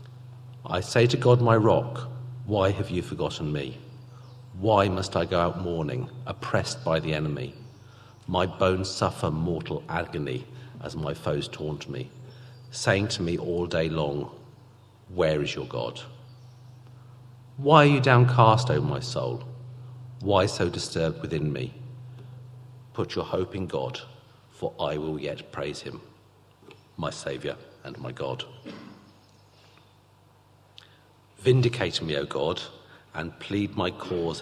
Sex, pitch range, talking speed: male, 85-125 Hz, 135 wpm